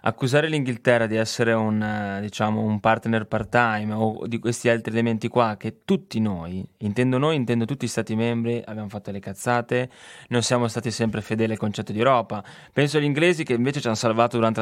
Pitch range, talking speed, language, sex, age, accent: 110-135 Hz, 195 wpm, Italian, male, 20-39, native